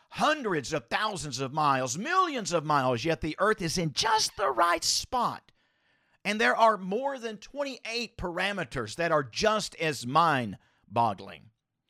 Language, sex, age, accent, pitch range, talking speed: English, male, 50-69, American, 150-215 Hz, 145 wpm